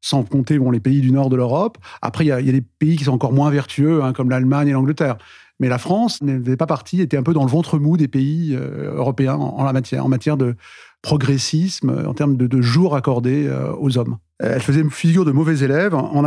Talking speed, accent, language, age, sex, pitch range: 255 wpm, French, French, 30-49, male, 135-165 Hz